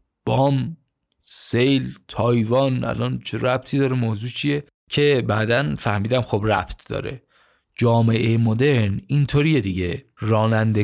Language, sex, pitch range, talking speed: Persian, male, 100-130 Hz, 110 wpm